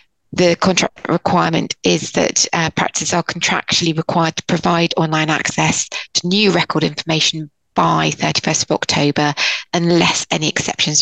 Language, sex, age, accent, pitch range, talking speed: English, female, 20-39, British, 155-175 Hz, 135 wpm